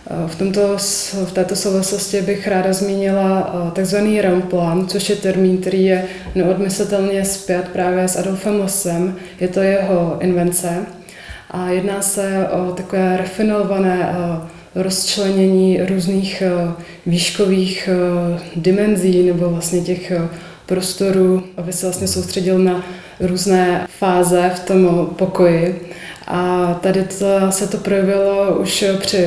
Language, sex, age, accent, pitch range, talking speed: Czech, female, 20-39, native, 180-195 Hz, 115 wpm